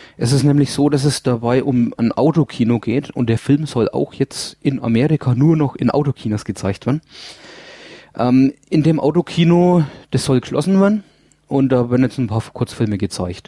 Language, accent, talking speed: English, German, 185 wpm